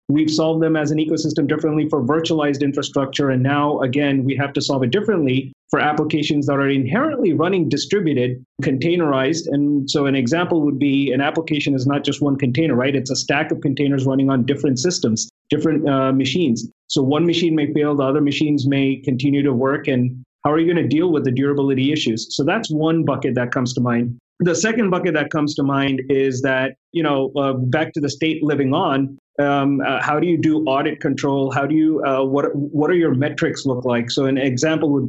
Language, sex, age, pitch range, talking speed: English, male, 30-49, 135-155 Hz, 215 wpm